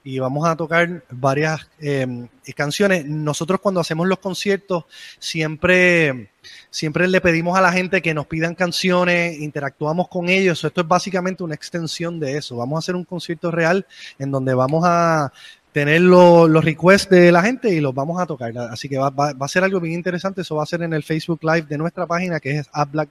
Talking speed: 210 wpm